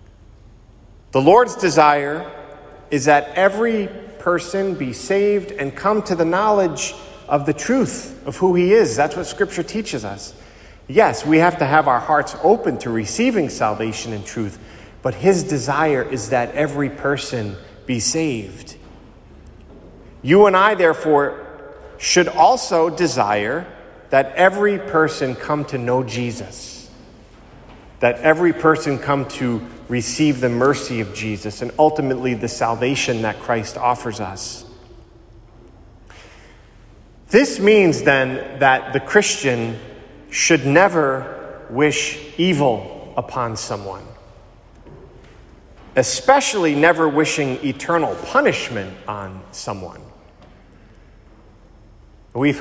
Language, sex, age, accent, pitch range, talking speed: English, male, 40-59, American, 110-155 Hz, 115 wpm